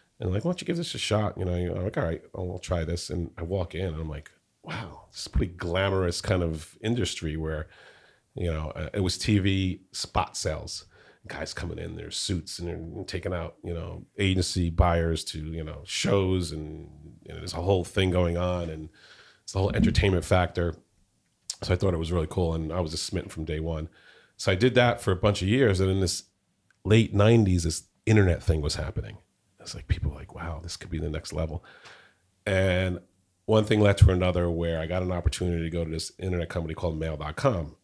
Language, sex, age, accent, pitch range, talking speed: English, male, 40-59, American, 85-105 Hz, 220 wpm